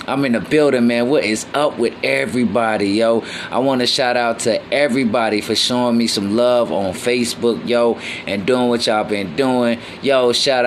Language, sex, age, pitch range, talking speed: English, male, 20-39, 105-125 Hz, 190 wpm